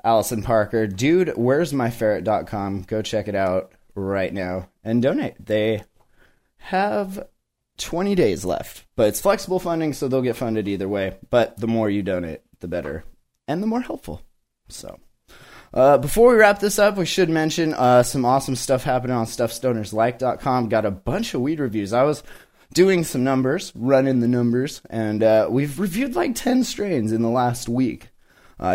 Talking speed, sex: 175 wpm, male